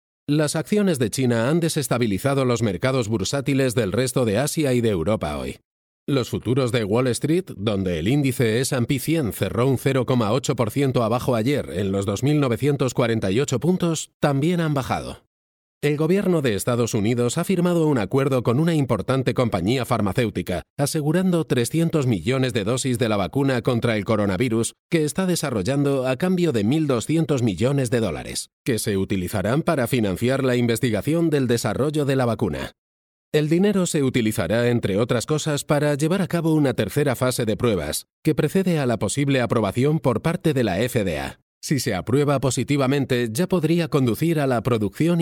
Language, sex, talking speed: Spanish, male, 165 wpm